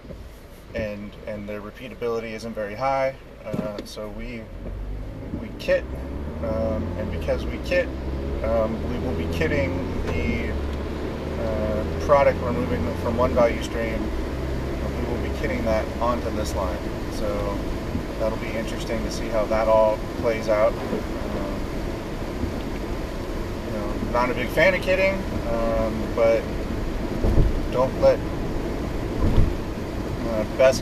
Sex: male